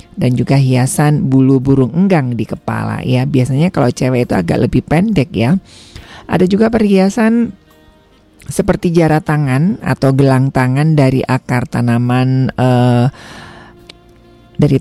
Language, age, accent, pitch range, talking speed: Indonesian, 40-59, native, 125-160 Hz, 125 wpm